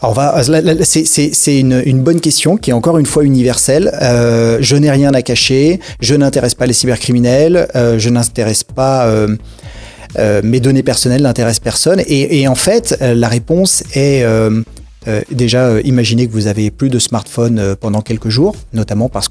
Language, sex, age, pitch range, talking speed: Arabic, male, 30-49, 110-140 Hz, 190 wpm